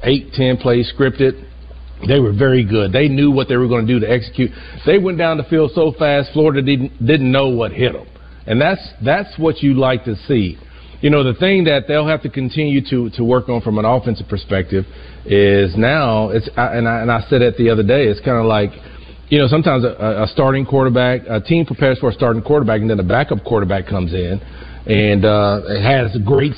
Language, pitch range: English, 105-135 Hz